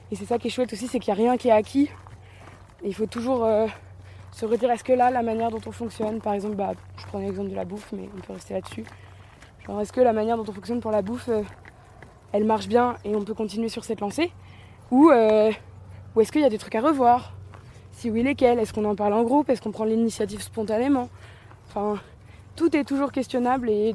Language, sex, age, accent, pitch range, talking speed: French, female, 20-39, French, 210-290 Hz, 240 wpm